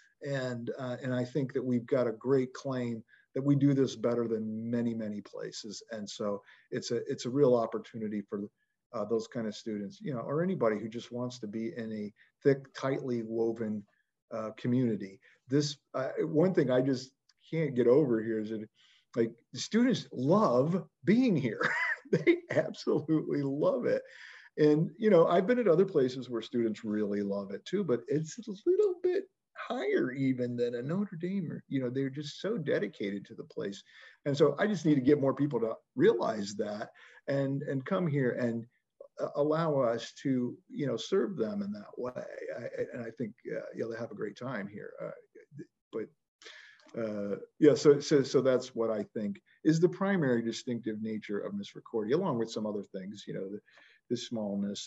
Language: English